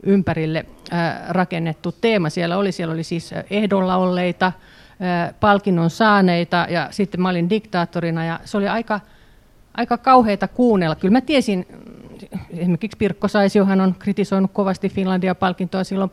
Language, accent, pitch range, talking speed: Finnish, native, 170-200 Hz, 135 wpm